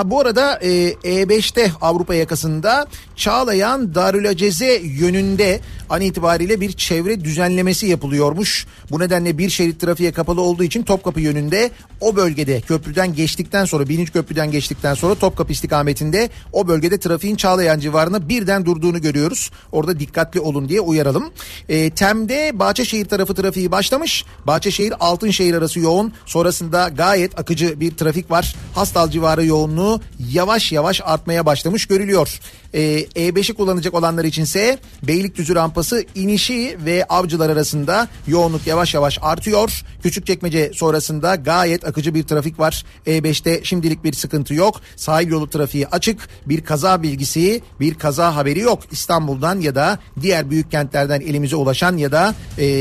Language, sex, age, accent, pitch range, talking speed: Turkish, male, 40-59, native, 155-190 Hz, 140 wpm